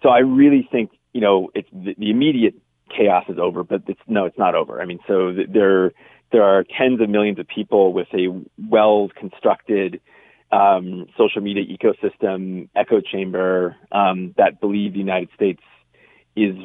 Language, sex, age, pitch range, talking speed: English, male, 30-49, 95-105 Hz, 160 wpm